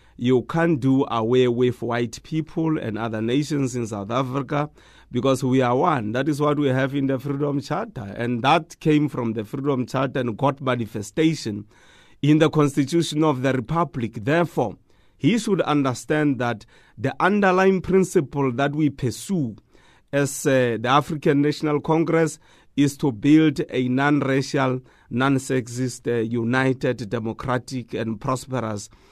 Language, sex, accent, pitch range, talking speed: English, male, South African, 120-150 Hz, 140 wpm